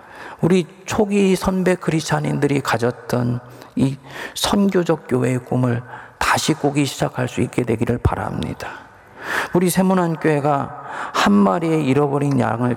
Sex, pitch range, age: male, 110-155 Hz, 40-59